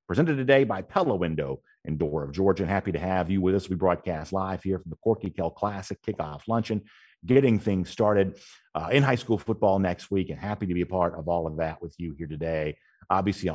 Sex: male